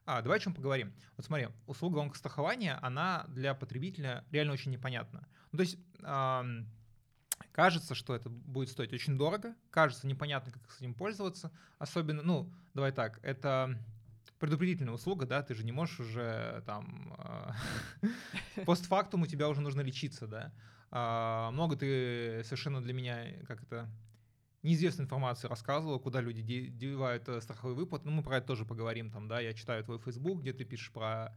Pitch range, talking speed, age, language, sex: 120-150 Hz, 165 wpm, 20-39, Russian, male